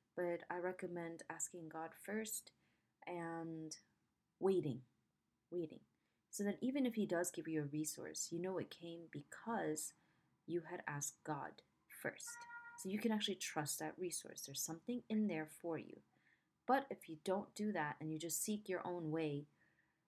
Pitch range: 155-205 Hz